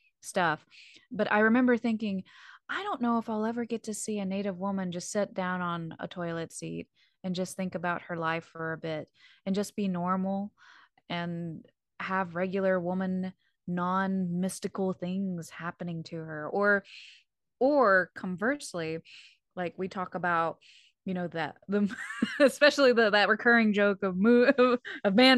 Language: English